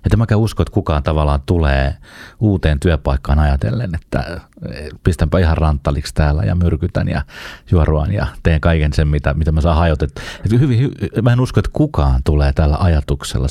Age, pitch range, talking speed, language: 30-49, 75-100 Hz, 170 wpm, Finnish